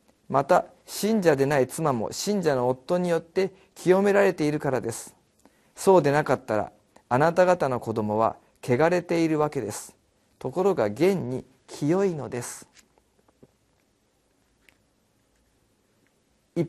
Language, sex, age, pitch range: Japanese, male, 40-59, 115-180 Hz